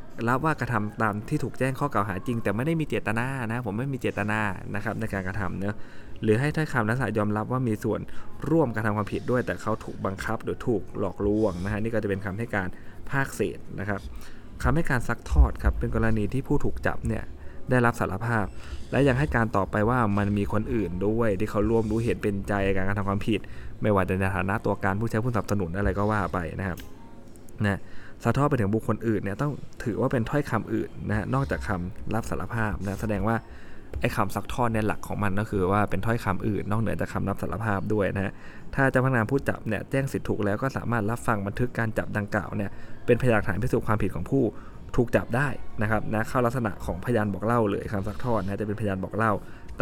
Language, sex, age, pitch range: Thai, male, 20-39, 100-115 Hz